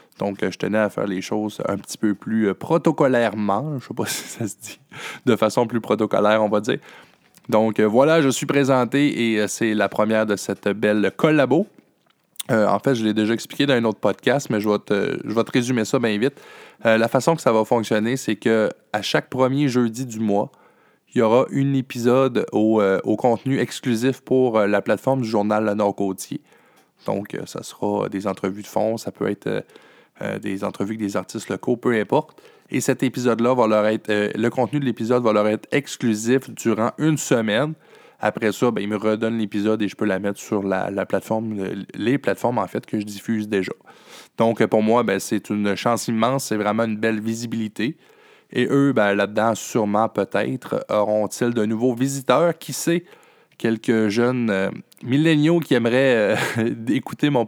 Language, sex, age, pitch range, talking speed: French, male, 20-39, 105-125 Hz, 195 wpm